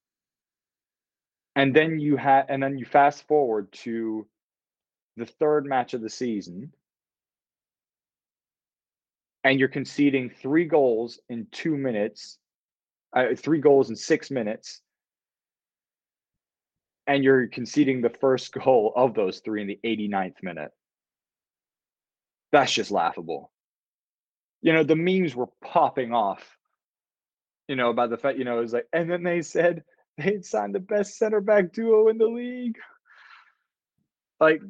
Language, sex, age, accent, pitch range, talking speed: English, male, 30-49, American, 120-170 Hz, 135 wpm